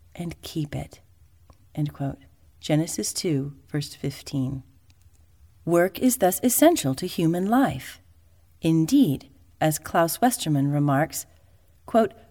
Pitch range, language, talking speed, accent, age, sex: 135-210 Hz, English, 105 wpm, American, 40-59, female